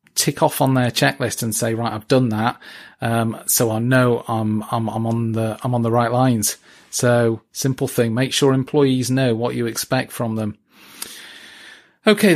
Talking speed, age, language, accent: 185 wpm, 40-59, English, British